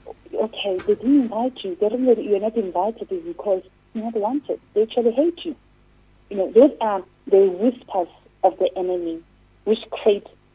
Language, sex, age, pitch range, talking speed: English, female, 40-59, 180-225 Hz, 190 wpm